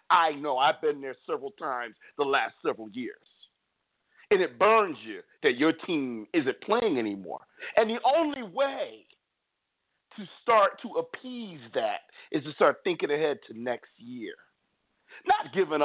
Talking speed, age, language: 150 wpm, 50-69, English